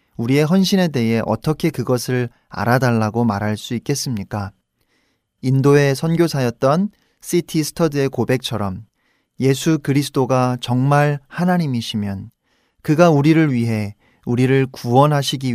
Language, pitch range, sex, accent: Korean, 110-145 Hz, male, native